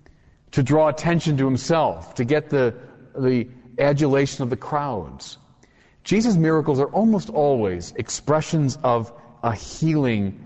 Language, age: English, 40-59